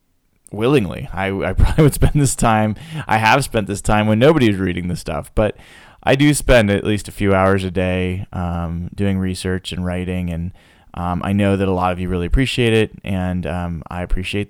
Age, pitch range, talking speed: 20-39, 90-110 Hz, 205 wpm